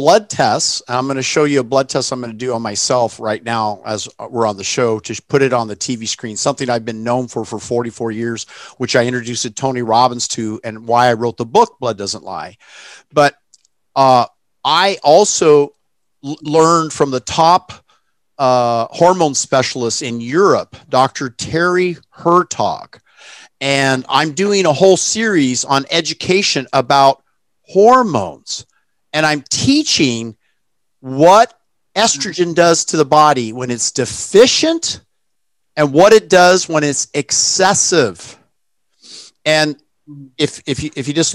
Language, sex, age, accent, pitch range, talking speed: English, male, 50-69, American, 120-155 Hz, 155 wpm